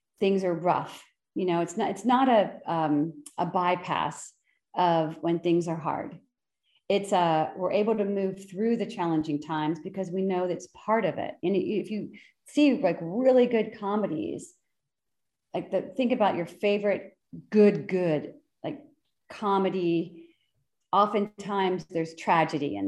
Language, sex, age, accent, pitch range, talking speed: English, female, 40-59, American, 165-205 Hz, 150 wpm